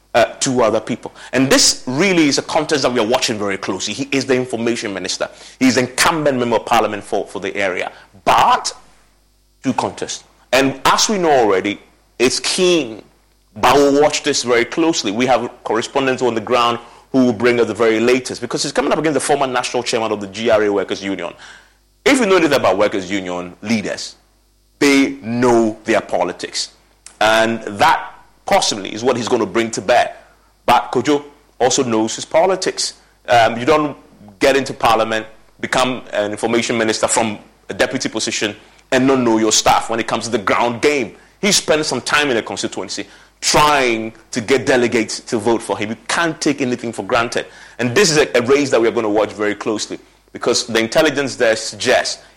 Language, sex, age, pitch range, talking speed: English, male, 30-49, 110-135 Hz, 195 wpm